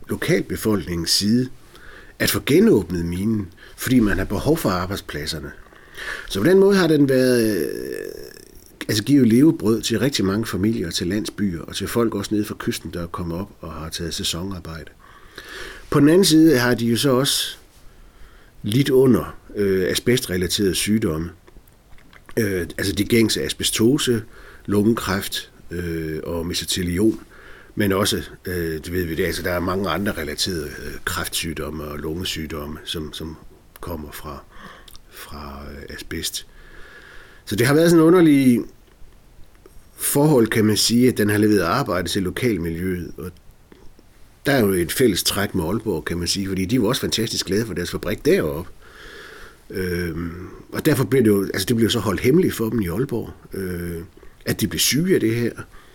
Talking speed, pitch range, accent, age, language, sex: 160 wpm, 85-120 Hz, native, 60-79, Danish, male